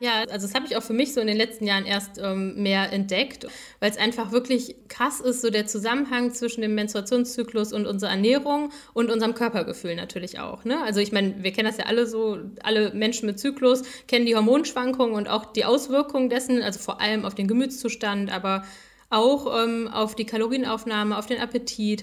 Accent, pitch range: German, 205-245 Hz